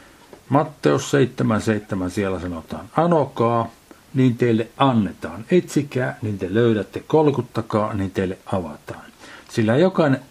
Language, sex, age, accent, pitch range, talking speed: Finnish, male, 50-69, native, 110-140 Hz, 105 wpm